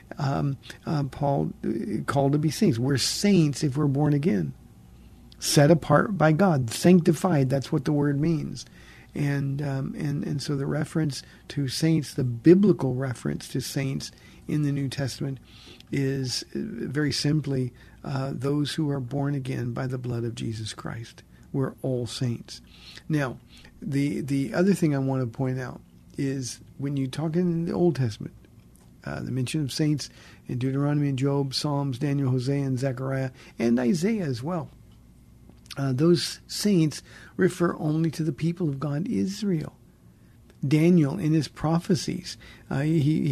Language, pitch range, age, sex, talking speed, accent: English, 130-160 Hz, 50-69, male, 155 wpm, American